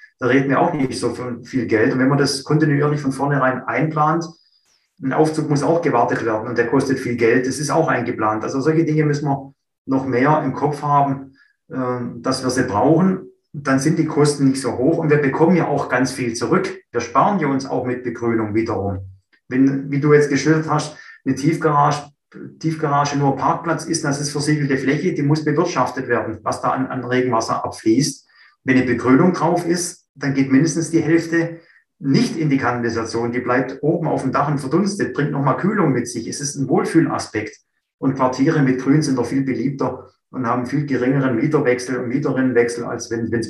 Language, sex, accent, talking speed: German, male, German, 195 wpm